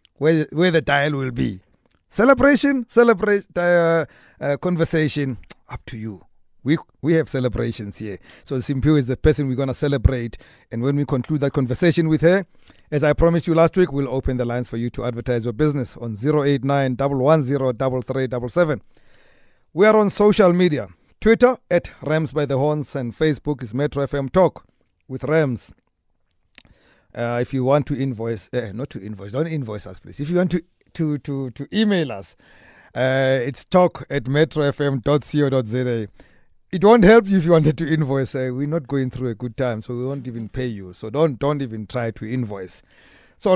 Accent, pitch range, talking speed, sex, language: South African, 125-160 Hz, 185 wpm, male, English